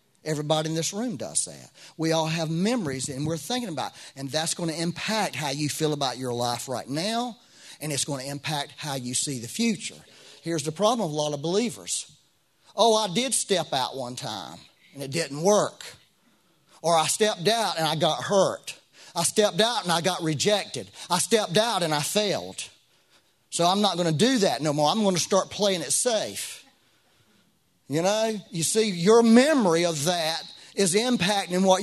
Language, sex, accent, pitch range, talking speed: English, male, American, 160-230 Hz, 200 wpm